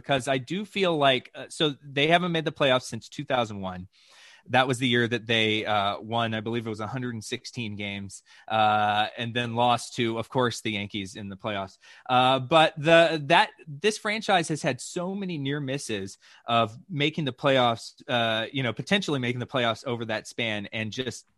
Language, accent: English, American